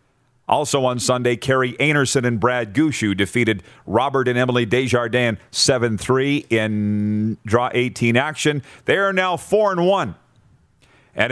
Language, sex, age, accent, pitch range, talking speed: English, male, 40-59, American, 110-140 Hz, 125 wpm